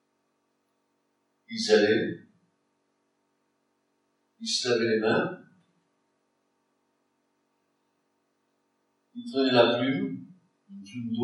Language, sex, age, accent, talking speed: French, male, 60-79, French, 75 wpm